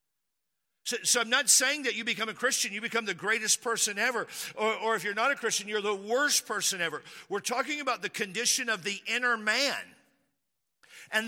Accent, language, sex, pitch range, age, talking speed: American, English, male, 210-255 Hz, 50-69, 200 wpm